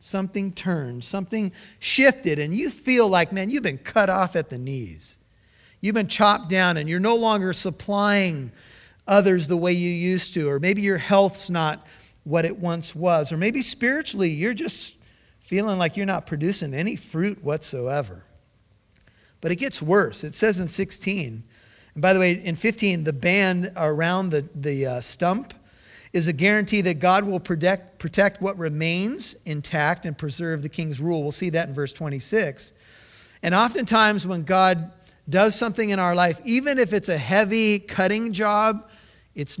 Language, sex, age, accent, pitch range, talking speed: English, male, 50-69, American, 150-200 Hz, 170 wpm